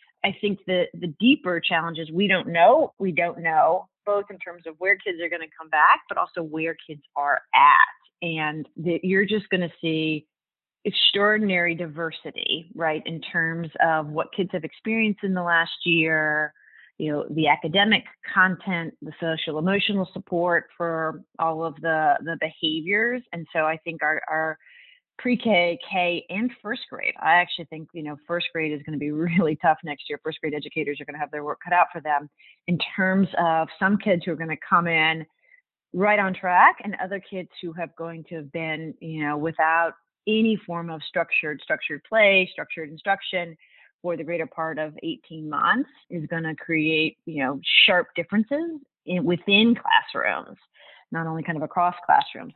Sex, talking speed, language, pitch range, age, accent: female, 185 wpm, English, 160-190 Hz, 30-49, American